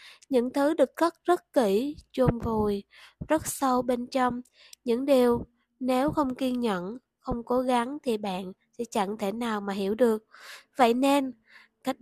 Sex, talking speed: female, 165 wpm